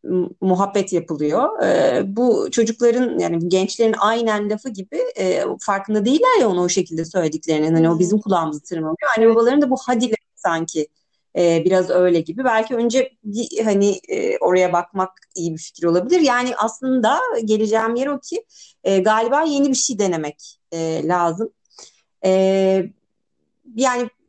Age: 40-59